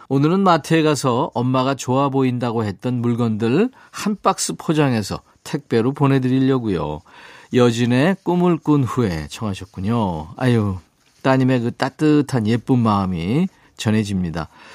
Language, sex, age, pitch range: Korean, male, 40-59, 120-160 Hz